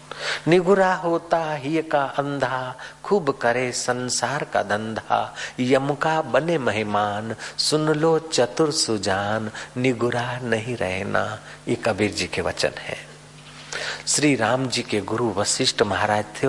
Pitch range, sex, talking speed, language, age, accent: 110-140 Hz, male, 125 wpm, Hindi, 50-69, native